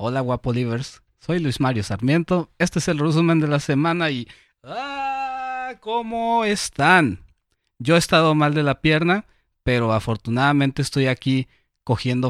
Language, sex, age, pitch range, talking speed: Spanish, male, 30-49, 115-160 Hz, 145 wpm